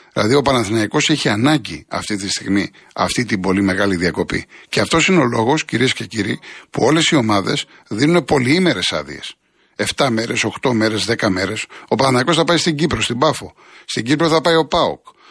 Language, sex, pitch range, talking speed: Greek, male, 105-150 Hz, 190 wpm